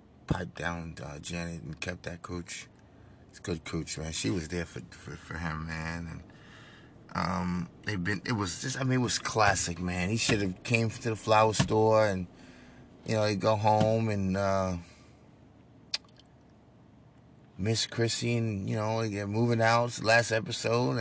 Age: 30-49